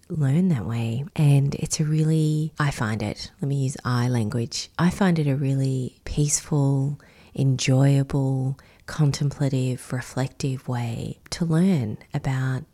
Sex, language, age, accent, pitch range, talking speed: female, English, 20-39, Australian, 125-150 Hz, 130 wpm